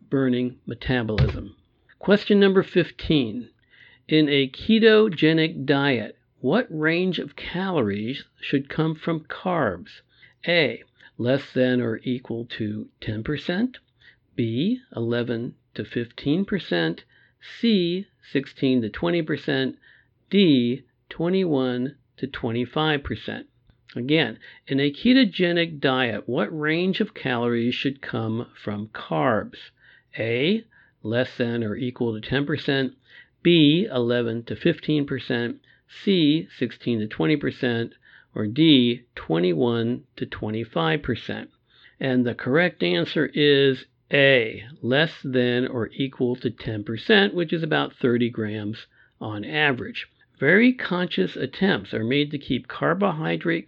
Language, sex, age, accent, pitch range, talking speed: English, male, 60-79, American, 120-160 Hz, 105 wpm